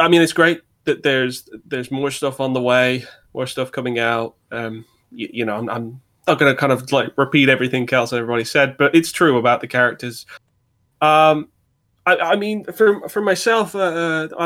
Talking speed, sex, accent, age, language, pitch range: 195 wpm, male, British, 20-39, English, 125-150 Hz